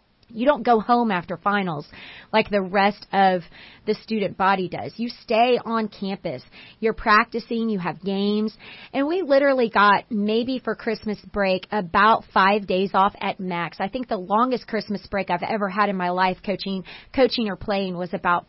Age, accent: 30-49, American